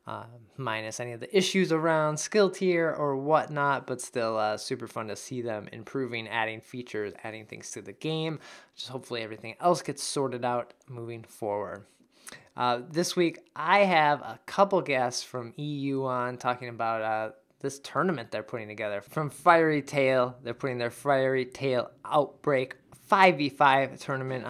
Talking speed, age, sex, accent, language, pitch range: 160 wpm, 20-39, male, American, English, 120-150 Hz